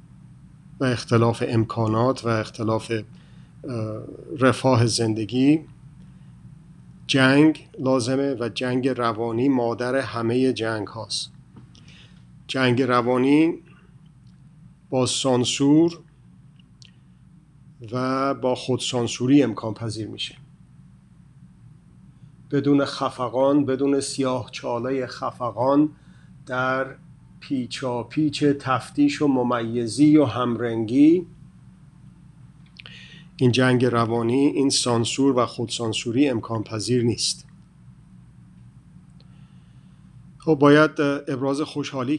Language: Persian